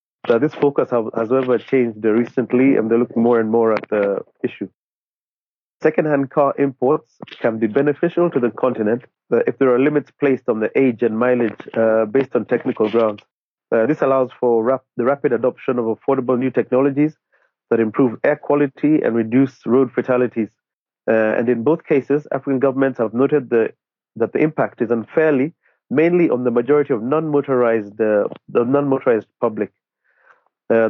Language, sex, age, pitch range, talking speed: English, male, 30-49, 115-140 Hz, 175 wpm